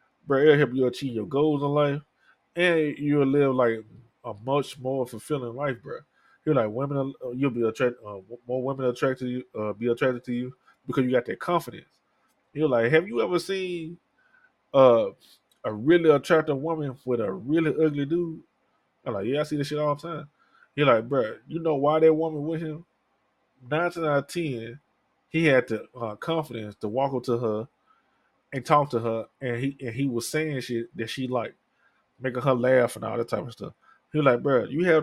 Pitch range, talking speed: 120-155 Hz, 205 wpm